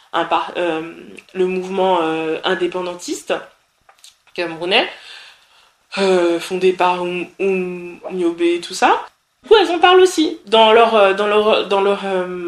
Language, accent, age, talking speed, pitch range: French, French, 20-39, 140 wpm, 175-240 Hz